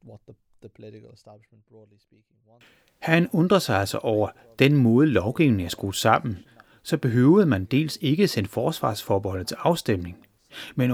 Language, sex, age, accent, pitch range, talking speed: Danish, male, 30-49, native, 105-145 Hz, 115 wpm